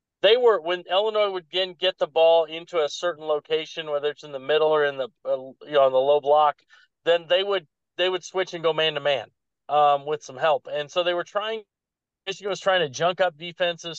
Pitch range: 155-190 Hz